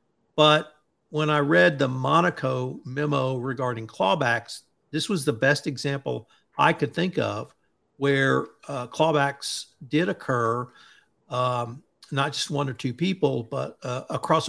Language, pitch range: English, 130-150 Hz